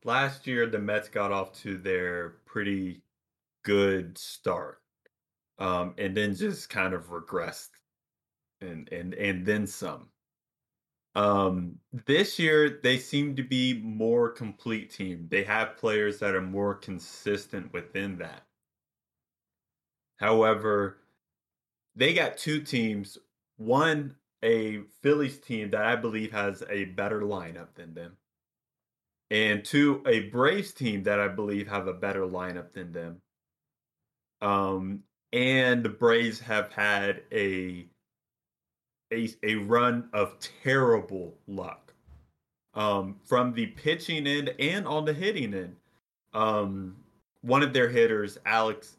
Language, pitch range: English, 95-120 Hz